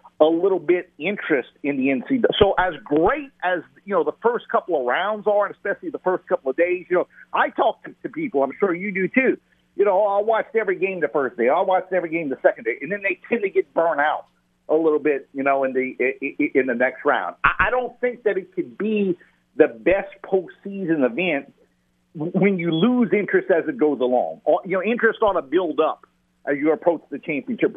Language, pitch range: English, 135-200 Hz